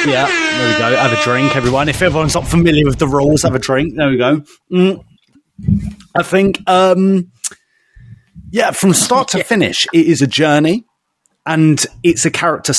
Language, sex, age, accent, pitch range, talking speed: English, male, 30-49, British, 130-170 Hz, 180 wpm